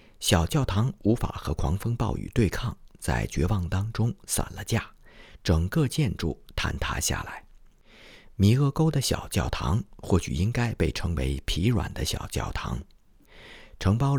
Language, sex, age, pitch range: Chinese, male, 50-69, 85-115 Hz